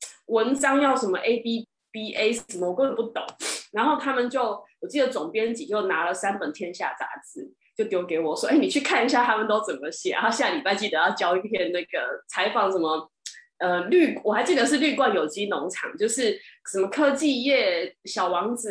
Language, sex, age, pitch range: Chinese, female, 20-39, 185-295 Hz